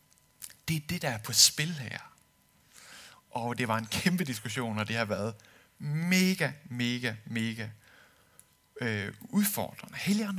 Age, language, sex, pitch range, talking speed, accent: 60-79, Danish, male, 140-190 Hz, 140 wpm, native